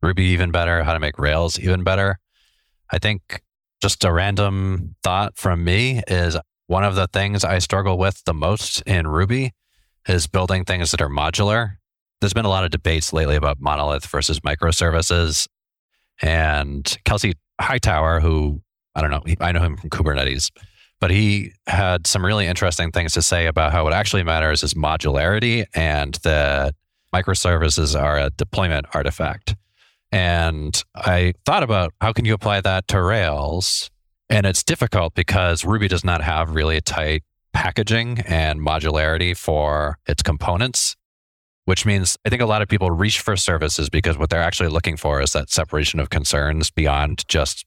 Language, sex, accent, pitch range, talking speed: English, male, American, 75-95 Hz, 165 wpm